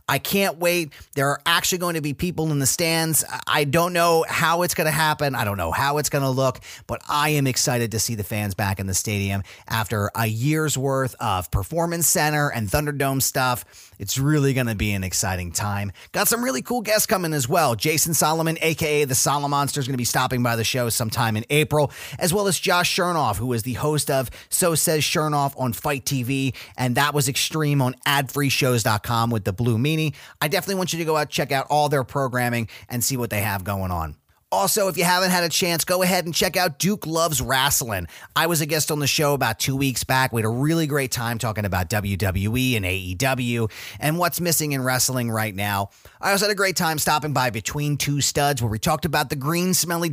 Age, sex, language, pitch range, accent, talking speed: 30-49, male, English, 115-160 Hz, American, 225 wpm